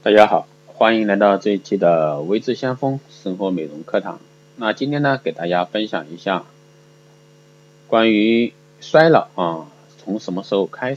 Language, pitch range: Chinese, 95-135 Hz